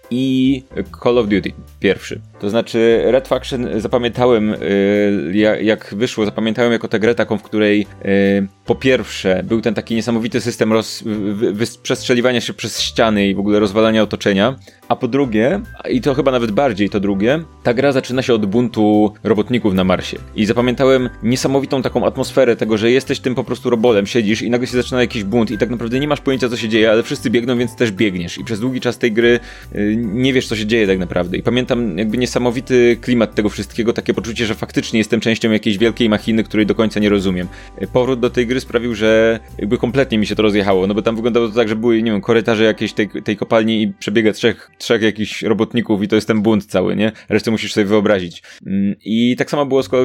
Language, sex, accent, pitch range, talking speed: Polish, male, native, 105-125 Hz, 205 wpm